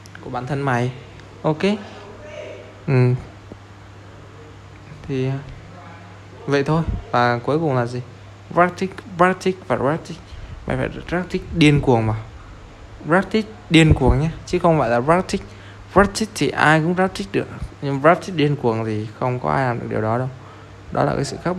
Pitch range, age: 105-150 Hz, 20-39